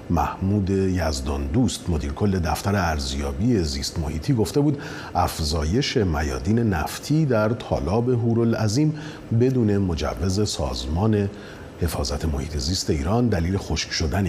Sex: male